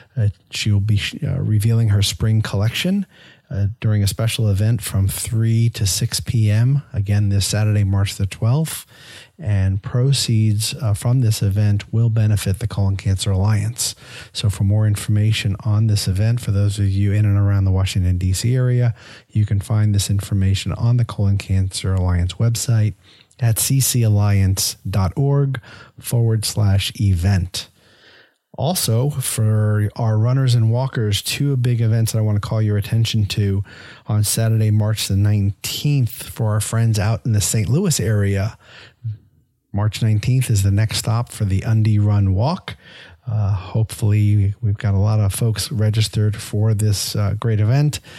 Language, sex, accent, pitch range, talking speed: English, male, American, 100-115 Hz, 160 wpm